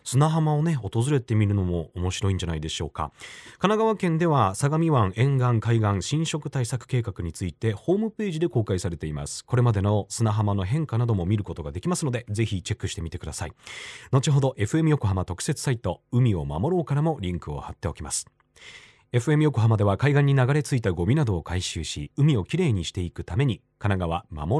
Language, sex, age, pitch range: Japanese, male, 30-49, 90-145 Hz